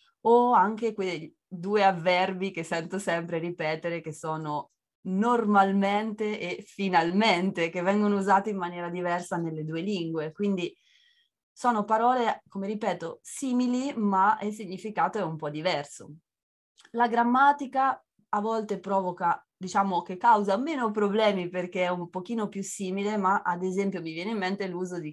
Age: 20-39